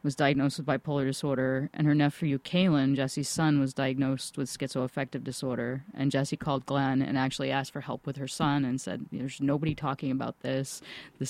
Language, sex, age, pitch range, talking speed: English, female, 30-49, 135-160 Hz, 190 wpm